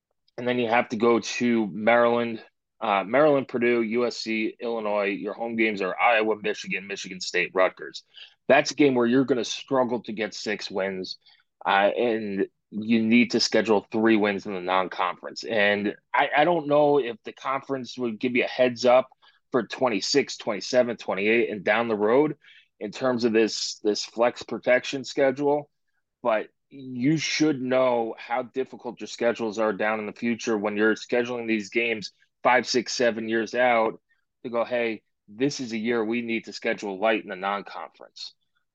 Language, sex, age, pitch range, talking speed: English, male, 20-39, 110-125 Hz, 175 wpm